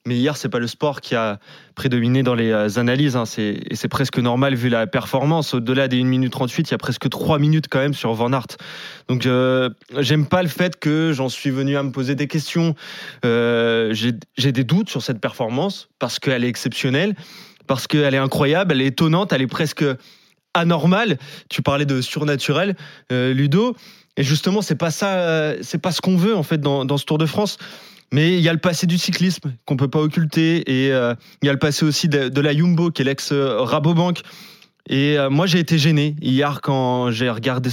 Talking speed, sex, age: 220 wpm, male, 20-39